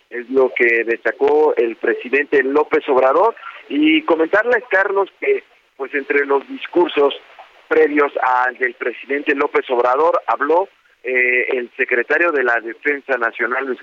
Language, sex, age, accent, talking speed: Spanish, male, 40-59, Mexican, 135 wpm